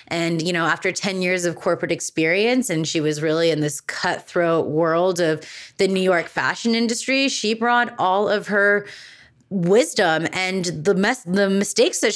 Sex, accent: female, American